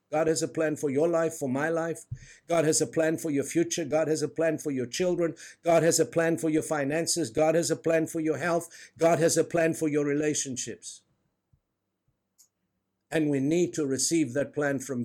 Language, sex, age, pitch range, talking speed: English, male, 60-79, 140-175 Hz, 210 wpm